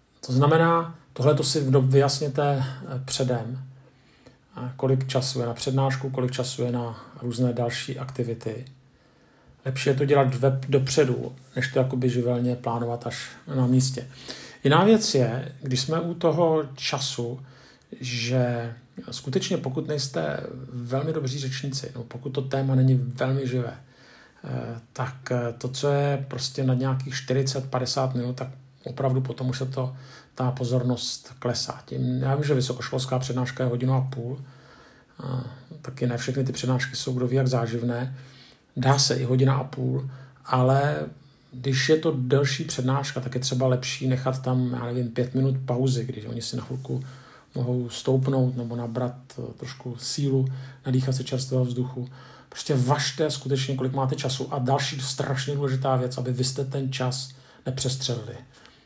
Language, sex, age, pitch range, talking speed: Czech, male, 50-69, 125-135 Hz, 150 wpm